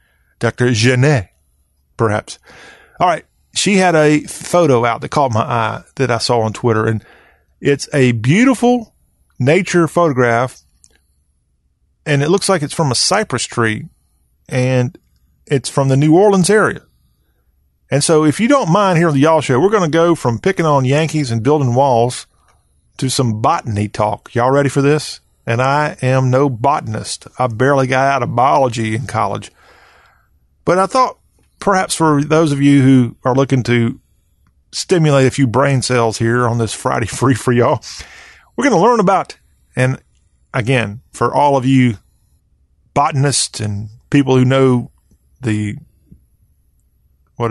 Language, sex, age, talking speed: English, male, 40-59, 160 wpm